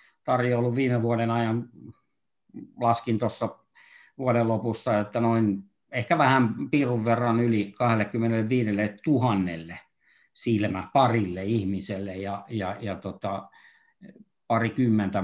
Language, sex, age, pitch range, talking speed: Finnish, male, 50-69, 100-125 Hz, 95 wpm